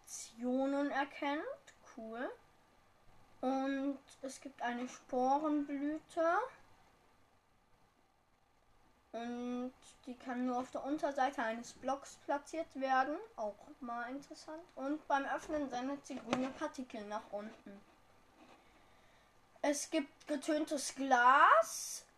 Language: German